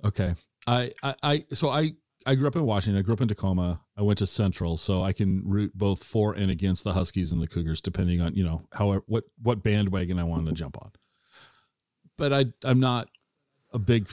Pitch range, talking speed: 95-125 Hz, 220 wpm